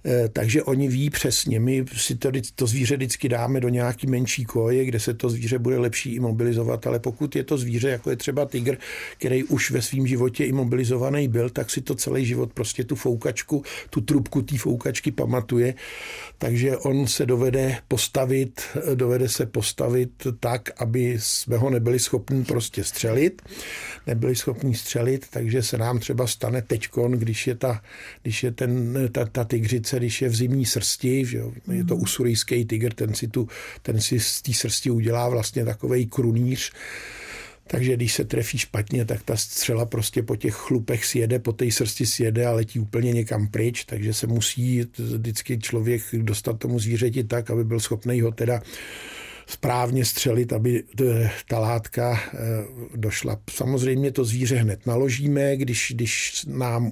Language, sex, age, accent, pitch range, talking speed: Czech, male, 50-69, native, 115-130 Hz, 165 wpm